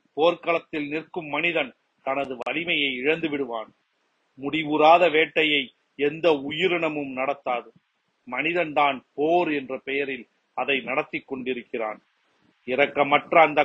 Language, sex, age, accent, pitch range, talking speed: Tamil, male, 40-59, native, 140-170 Hz, 65 wpm